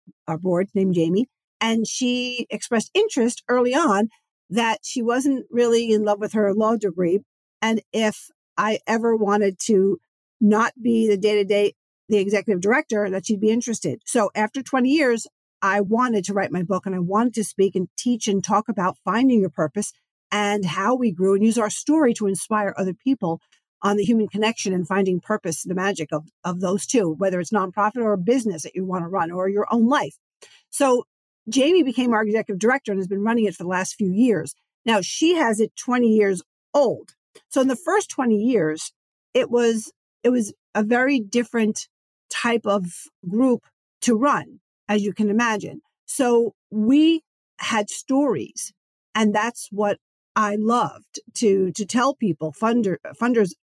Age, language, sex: 50-69, English, female